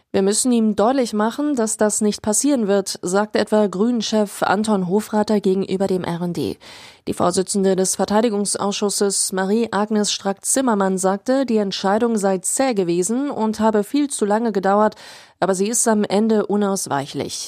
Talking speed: 145 wpm